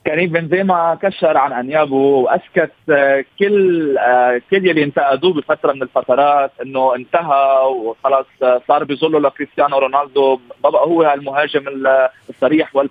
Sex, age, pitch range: male, 30-49, 135-170 Hz